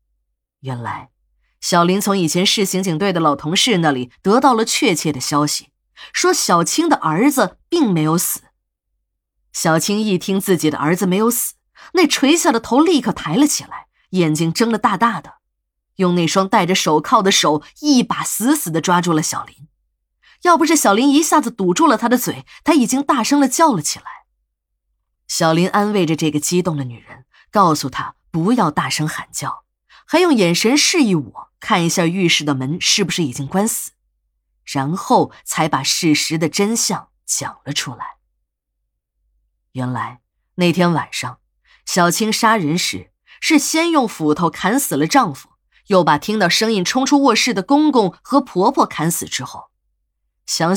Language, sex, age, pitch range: Chinese, female, 20-39, 155-240 Hz